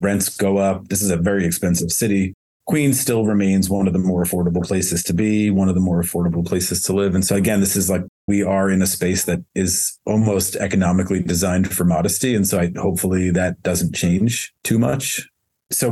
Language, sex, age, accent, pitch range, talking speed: English, male, 30-49, American, 95-110 Hz, 205 wpm